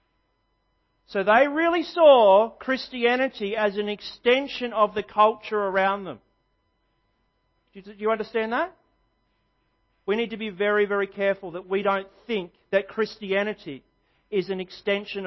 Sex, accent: male, Australian